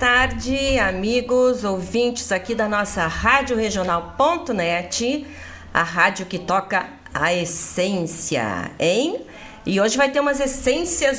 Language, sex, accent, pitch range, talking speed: Portuguese, female, Brazilian, 155-215 Hz, 120 wpm